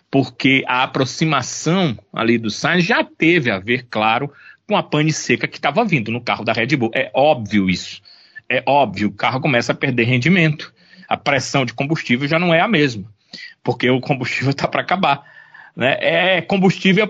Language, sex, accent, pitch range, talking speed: Portuguese, male, Brazilian, 130-170 Hz, 185 wpm